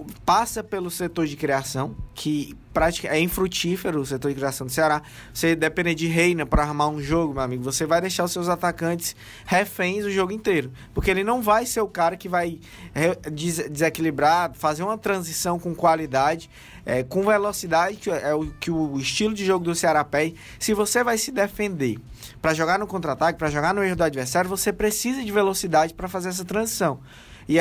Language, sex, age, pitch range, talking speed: Portuguese, male, 20-39, 155-190 Hz, 195 wpm